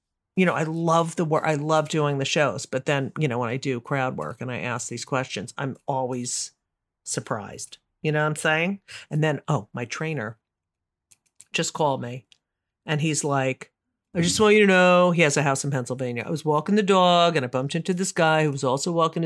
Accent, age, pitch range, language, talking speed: American, 50-69, 135-195 Hz, English, 220 wpm